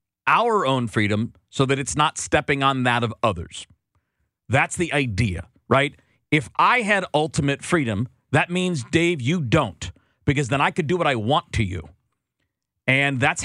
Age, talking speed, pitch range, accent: 40-59, 170 wpm, 110-155 Hz, American